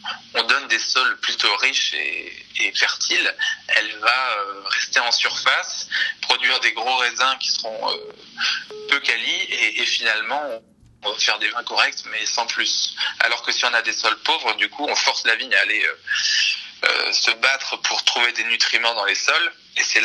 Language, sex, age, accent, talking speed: French, male, 20-39, French, 195 wpm